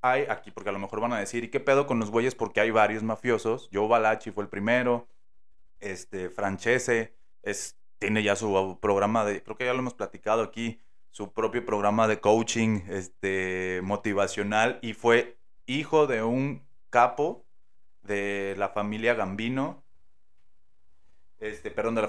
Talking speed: 165 wpm